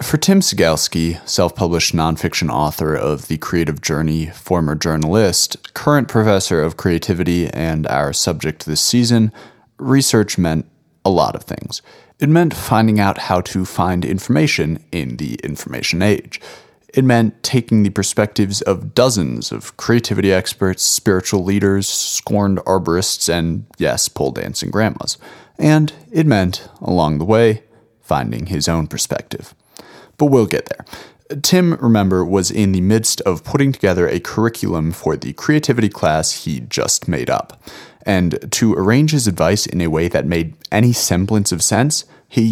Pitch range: 85-115 Hz